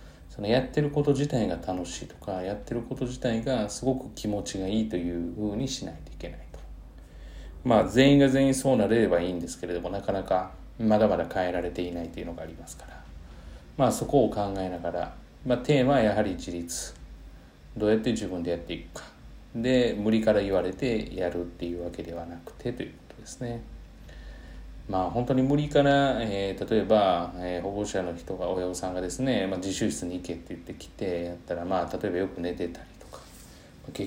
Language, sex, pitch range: Japanese, male, 85-115 Hz